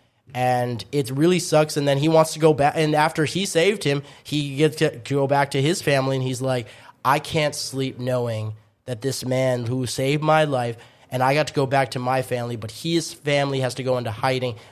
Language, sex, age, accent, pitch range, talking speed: English, male, 20-39, American, 125-145 Hz, 225 wpm